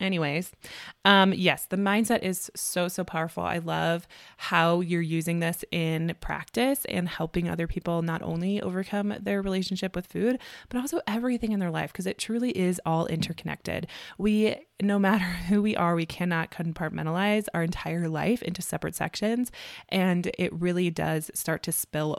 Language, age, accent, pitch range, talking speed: English, 20-39, American, 165-200 Hz, 170 wpm